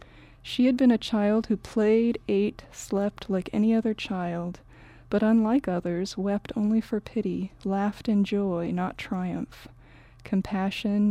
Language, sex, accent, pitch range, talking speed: English, female, American, 185-215 Hz, 140 wpm